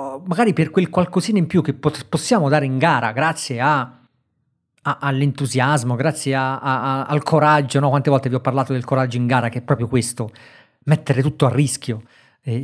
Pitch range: 130-165 Hz